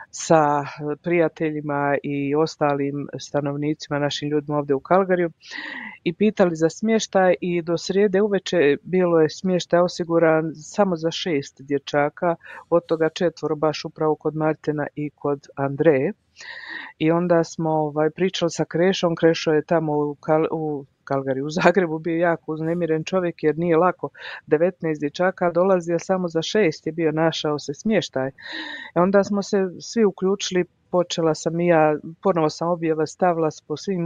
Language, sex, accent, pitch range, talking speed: Croatian, female, native, 155-185 Hz, 150 wpm